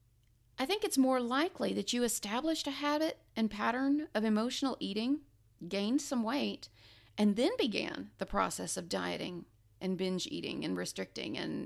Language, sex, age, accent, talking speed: English, female, 40-59, American, 160 wpm